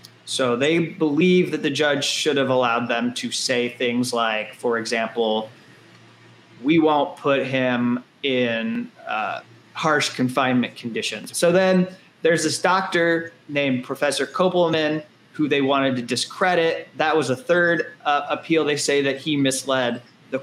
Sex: male